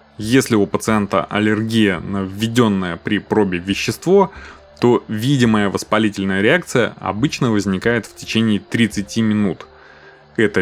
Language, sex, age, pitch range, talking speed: Russian, male, 20-39, 100-125 Hz, 115 wpm